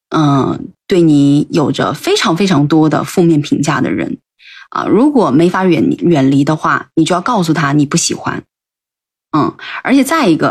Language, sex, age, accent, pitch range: Chinese, female, 20-39, native, 155-195 Hz